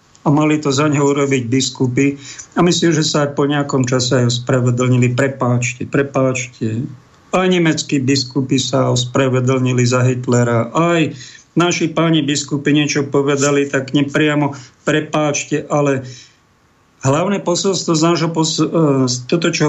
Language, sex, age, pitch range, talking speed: Slovak, male, 50-69, 140-175 Hz, 130 wpm